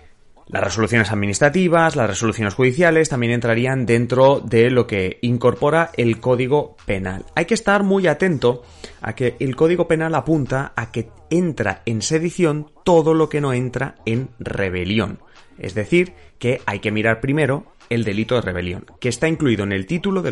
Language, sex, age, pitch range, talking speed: Spanish, male, 30-49, 105-150 Hz, 170 wpm